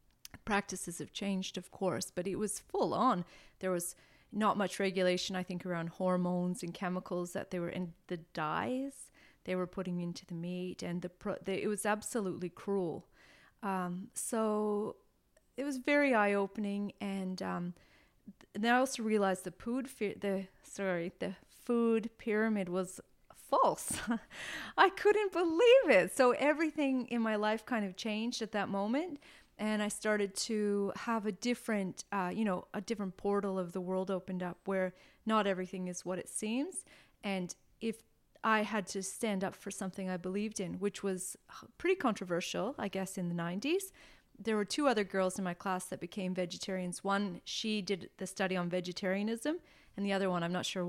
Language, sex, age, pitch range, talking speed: English, female, 30-49, 185-220 Hz, 180 wpm